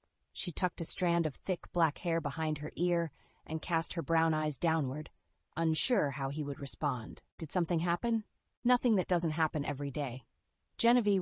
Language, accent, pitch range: English, American, 150-190 Hz